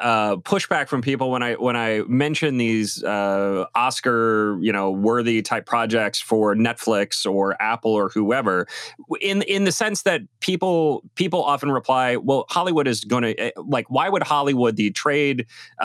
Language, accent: English, American